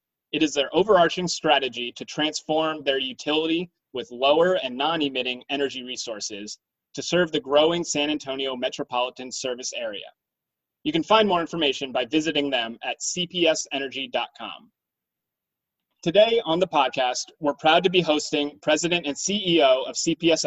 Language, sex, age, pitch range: English, male, 30-49, 135-165 Hz